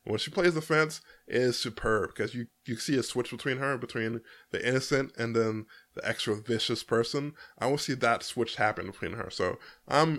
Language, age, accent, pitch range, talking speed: English, 20-39, American, 115-140 Hz, 205 wpm